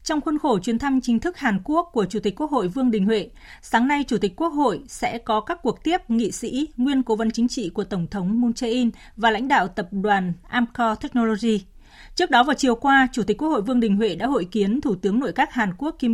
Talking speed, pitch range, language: 255 wpm, 205-255 Hz, Vietnamese